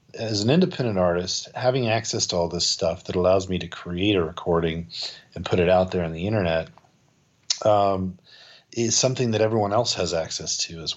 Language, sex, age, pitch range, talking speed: English, male, 40-59, 90-110 Hz, 190 wpm